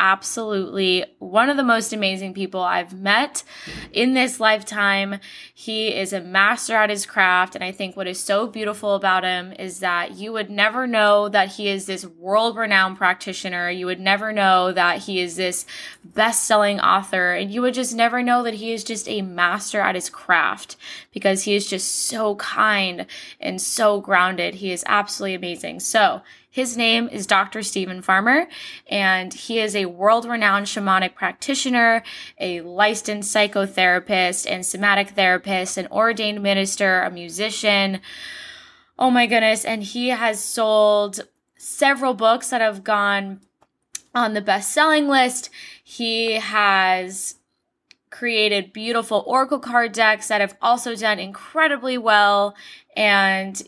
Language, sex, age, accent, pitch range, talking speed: English, female, 10-29, American, 190-230 Hz, 150 wpm